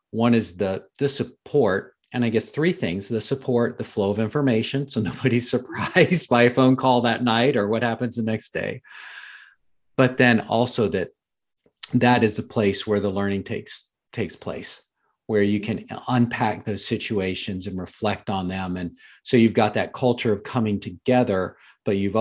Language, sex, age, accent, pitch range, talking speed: English, male, 40-59, American, 95-120 Hz, 180 wpm